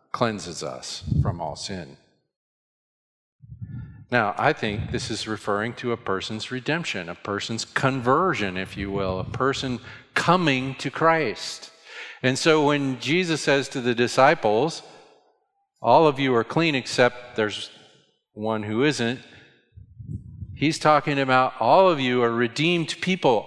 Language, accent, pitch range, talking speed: English, American, 105-150 Hz, 135 wpm